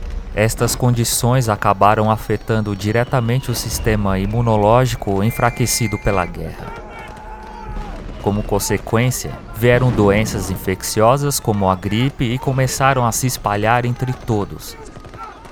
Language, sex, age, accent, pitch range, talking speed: Portuguese, male, 20-39, Brazilian, 100-125 Hz, 100 wpm